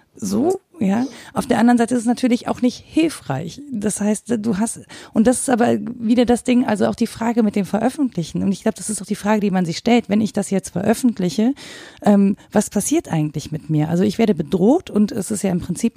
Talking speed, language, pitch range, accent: 235 wpm, German, 180-225 Hz, German